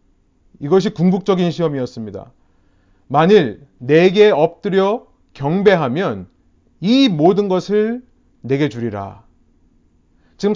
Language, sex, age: Korean, male, 30-49